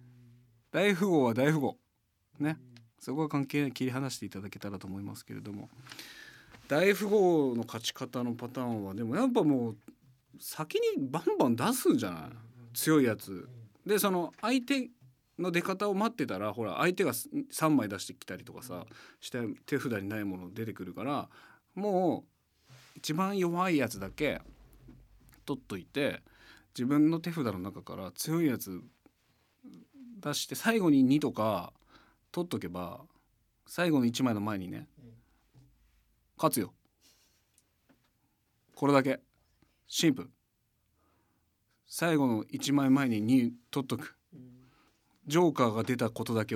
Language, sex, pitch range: Japanese, male, 115-160 Hz